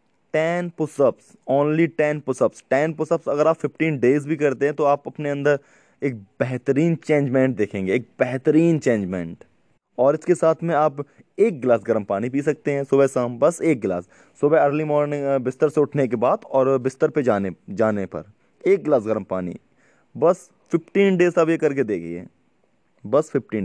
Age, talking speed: 20-39, 175 wpm